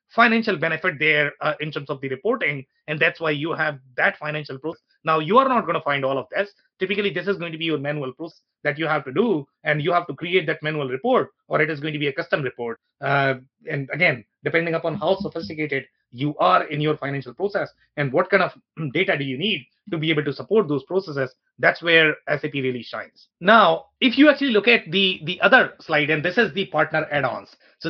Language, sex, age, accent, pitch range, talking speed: English, male, 30-49, Indian, 150-195 Hz, 230 wpm